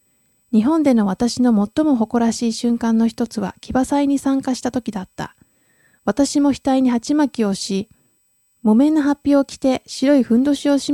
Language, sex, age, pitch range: Japanese, female, 20-39, 210-275 Hz